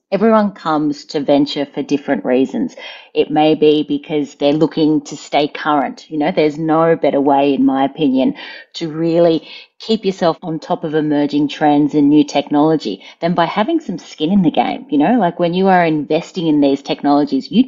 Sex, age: female, 30-49